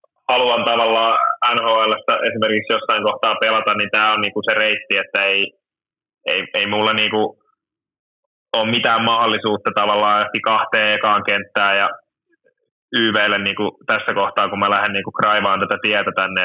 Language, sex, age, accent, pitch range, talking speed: Finnish, male, 20-39, native, 105-120 Hz, 140 wpm